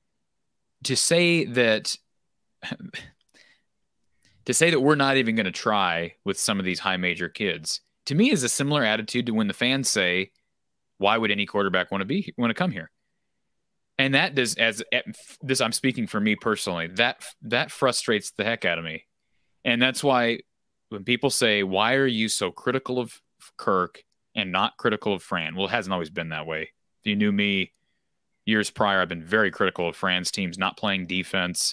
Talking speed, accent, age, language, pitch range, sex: 190 wpm, American, 30-49, English, 95-130 Hz, male